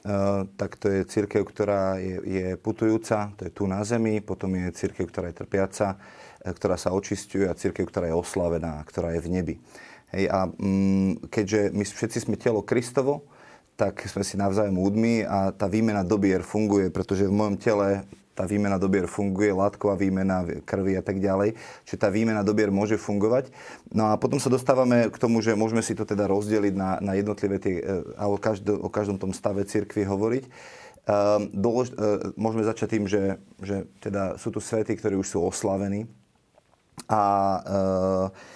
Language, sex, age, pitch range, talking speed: Slovak, male, 30-49, 95-105 Hz, 175 wpm